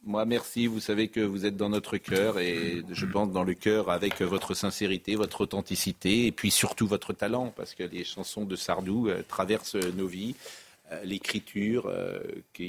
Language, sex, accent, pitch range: French, male, French, 95-110 Hz